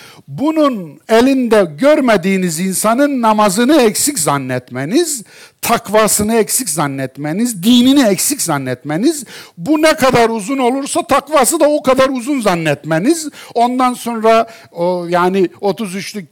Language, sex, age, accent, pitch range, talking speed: Turkish, male, 60-79, native, 155-255 Hz, 105 wpm